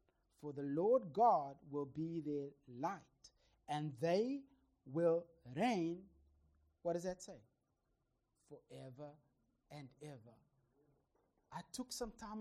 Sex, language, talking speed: male, English, 110 wpm